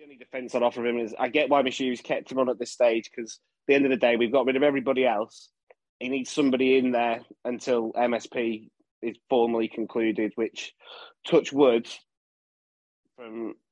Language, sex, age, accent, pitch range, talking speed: English, male, 20-39, British, 115-125 Hz, 195 wpm